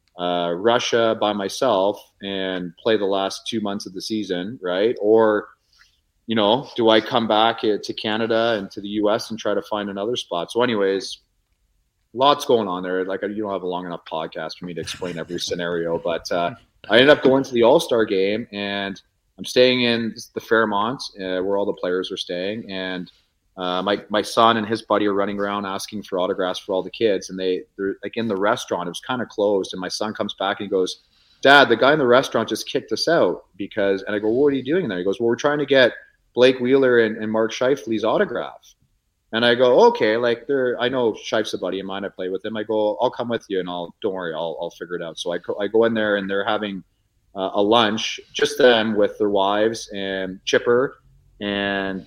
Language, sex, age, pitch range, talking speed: English, male, 30-49, 95-115 Hz, 230 wpm